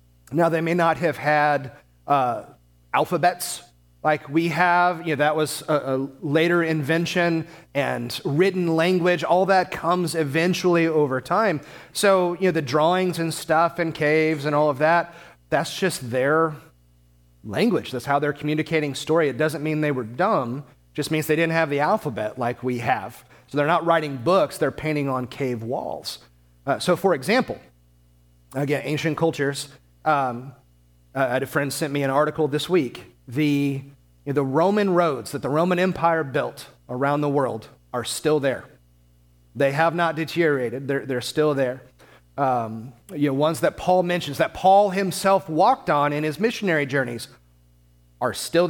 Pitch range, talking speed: 130-170 Hz, 165 wpm